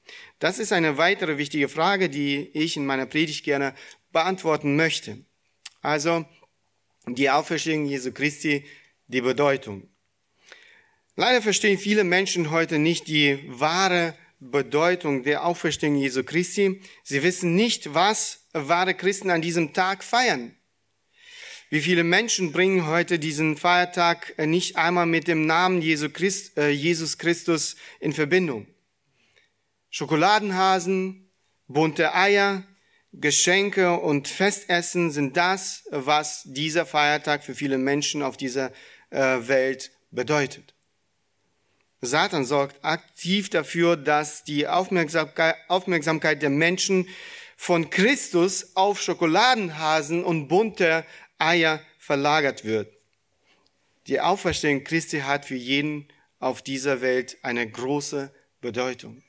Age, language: 40-59, German